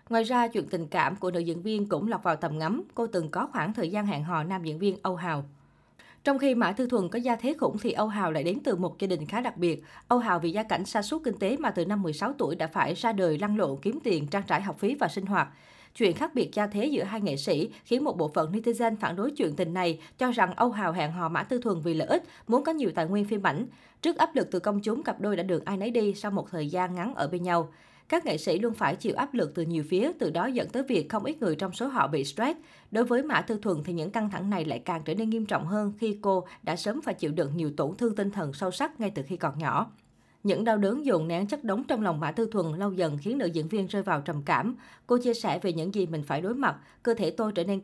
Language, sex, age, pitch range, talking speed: Vietnamese, female, 20-39, 175-235 Hz, 290 wpm